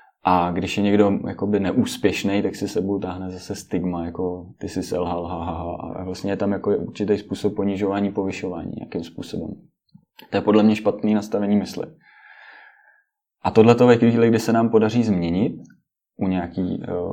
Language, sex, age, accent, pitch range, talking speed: Czech, male, 20-39, native, 90-105 Hz, 170 wpm